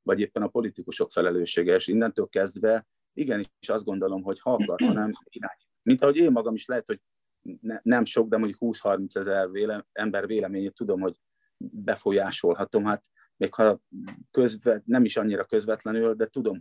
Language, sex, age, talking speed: Hungarian, male, 30-49, 165 wpm